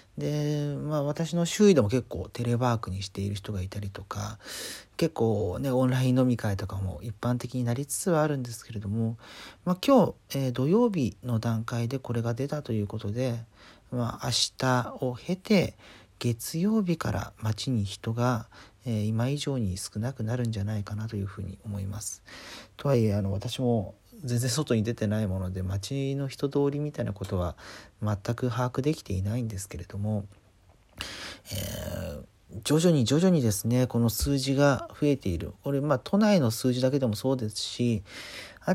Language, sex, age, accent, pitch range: Japanese, male, 40-59, native, 105-135 Hz